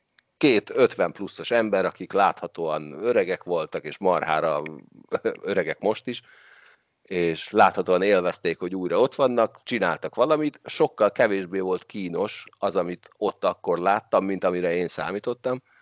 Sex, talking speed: male, 135 wpm